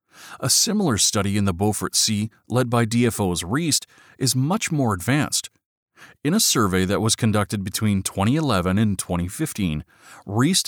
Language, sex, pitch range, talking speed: English, male, 105-145 Hz, 145 wpm